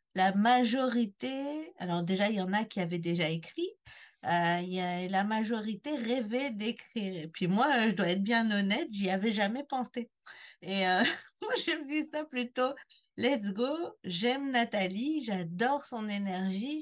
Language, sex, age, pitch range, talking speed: French, female, 40-59, 185-245 Hz, 165 wpm